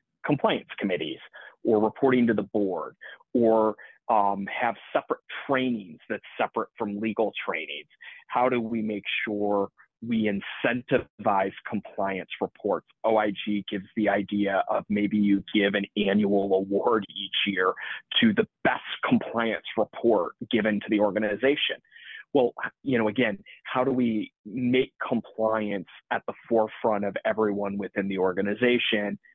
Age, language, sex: 30-49, English, male